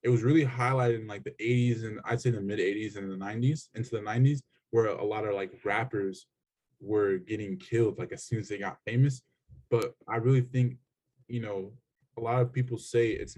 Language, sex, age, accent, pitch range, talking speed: English, male, 20-39, American, 115-140 Hz, 215 wpm